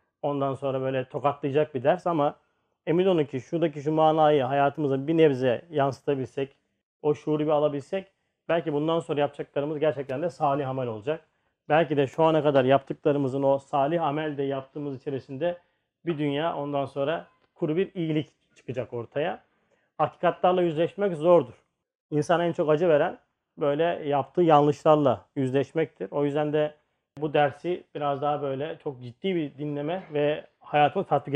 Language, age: Turkish, 40-59